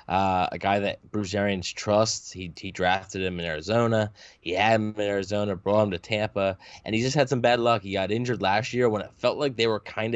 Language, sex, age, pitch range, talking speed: English, male, 10-29, 100-115 Hz, 240 wpm